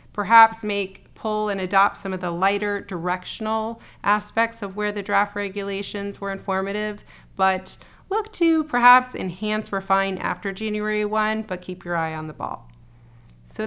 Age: 30-49